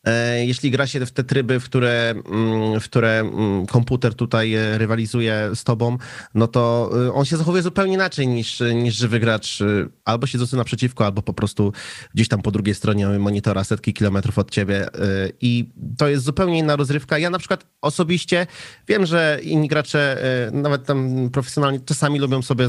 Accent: native